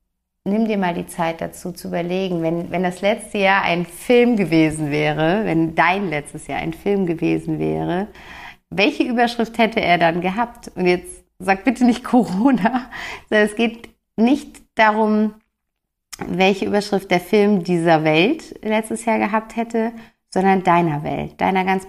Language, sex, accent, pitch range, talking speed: German, female, German, 160-210 Hz, 155 wpm